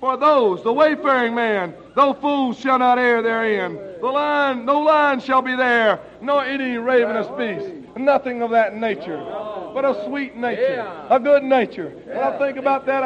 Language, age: English, 60-79